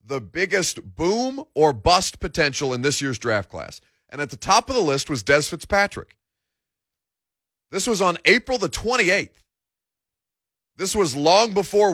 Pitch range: 140-195 Hz